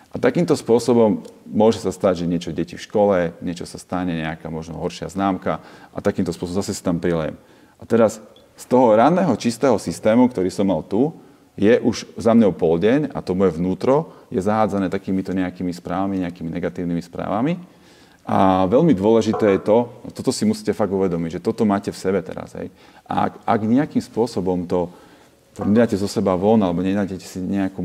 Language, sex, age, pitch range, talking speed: Slovak, male, 40-59, 90-100 Hz, 185 wpm